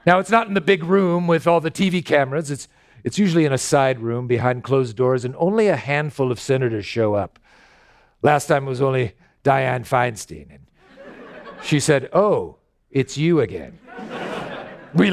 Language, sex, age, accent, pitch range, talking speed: English, male, 50-69, American, 125-175 Hz, 180 wpm